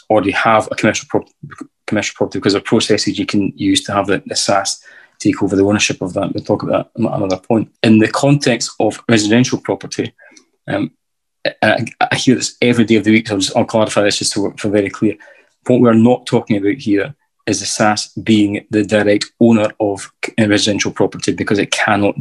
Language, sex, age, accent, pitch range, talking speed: English, male, 20-39, British, 100-115 Hz, 210 wpm